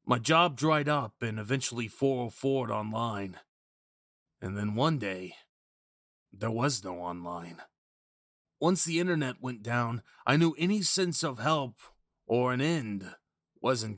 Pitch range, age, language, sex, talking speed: 110-150 Hz, 30-49, English, male, 135 wpm